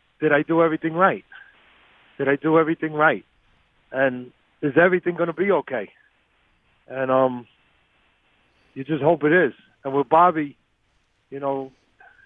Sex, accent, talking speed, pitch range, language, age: male, American, 135 wpm, 135-170 Hz, English, 50-69